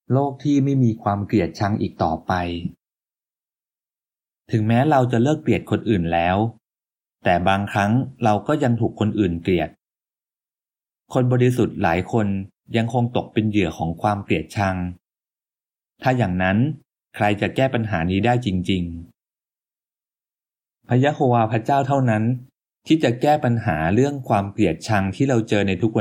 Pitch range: 95-125 Hz